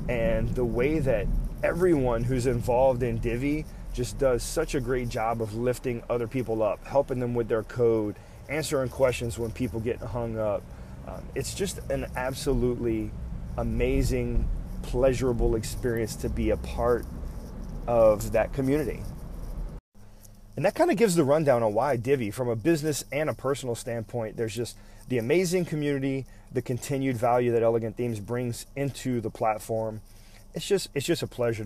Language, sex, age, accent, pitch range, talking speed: English, male, 30-49, American, 110-135 Hz, 155 wpm